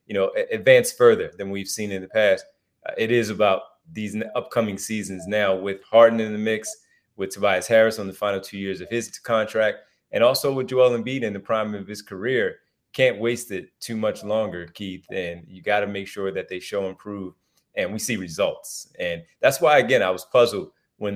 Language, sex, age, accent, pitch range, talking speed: English, male, 30-49, American, 100-115 Hz, 215 wpm